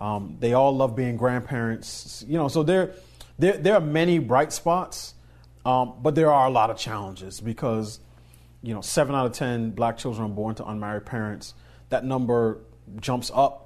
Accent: American